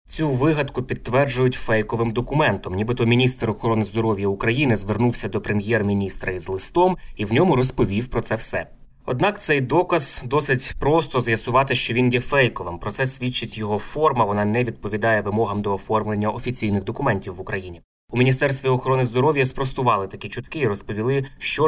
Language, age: Ukrainian, 20-39